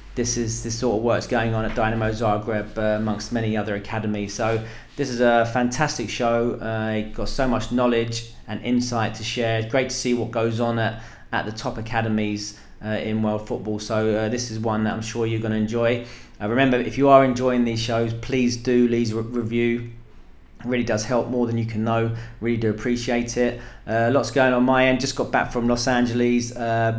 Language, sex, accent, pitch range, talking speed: English, male, British, 110-125 Hz, 220 wpm